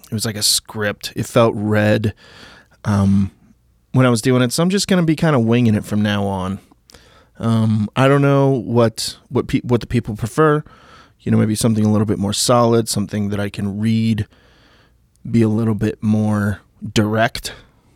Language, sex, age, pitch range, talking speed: English, male, 20-39, 105-120 Hz, 195 wpm